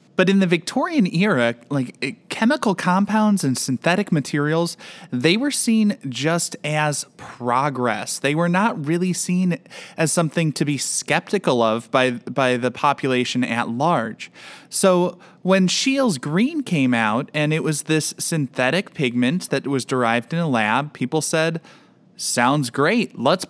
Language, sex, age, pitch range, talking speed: English, male, 20-39, 130-165 Hz, 145 wpm